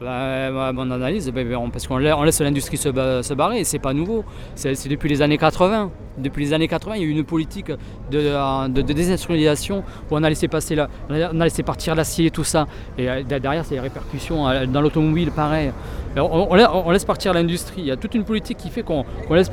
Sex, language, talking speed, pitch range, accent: male, French, 235 wpm, 135-170 Hz, French